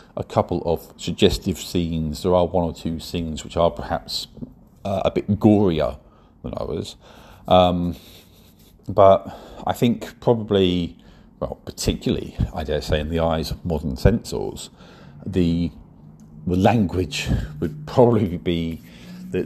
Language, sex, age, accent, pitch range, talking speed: English, male, 50-69, British, 80-110 Hz, 135 wpm